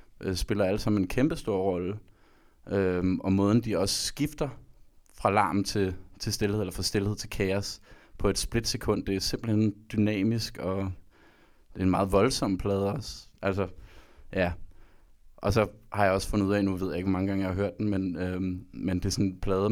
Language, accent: Danish, native